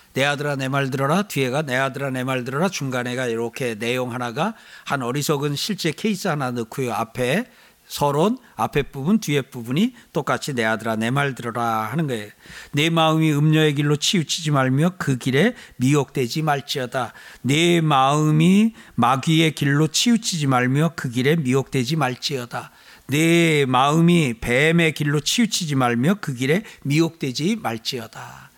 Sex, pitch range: male, 130-175 Hz